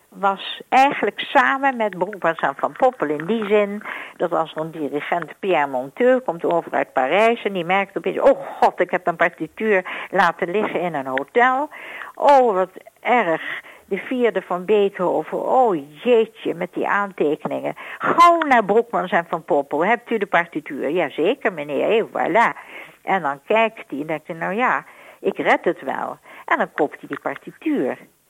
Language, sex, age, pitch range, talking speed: Dutch, female, 60-79, 165-250 Hz, 170 wpm